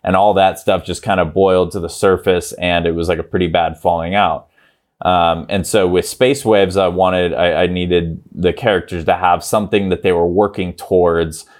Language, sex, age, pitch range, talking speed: English, male, 20-39, 85-100 Hz, 210 wpm